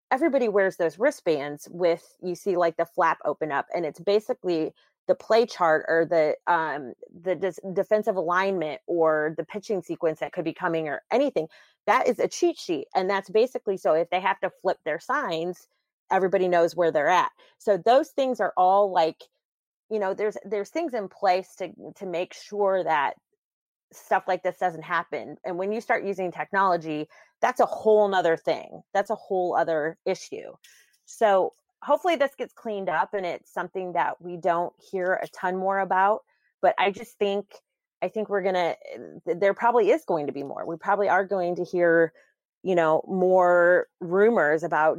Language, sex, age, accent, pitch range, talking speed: English, female, 30-49, American, 170-210 Hz, 185 wpm